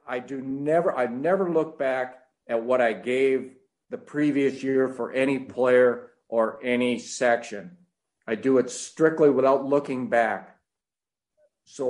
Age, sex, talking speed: 50-69, male, 140 wpm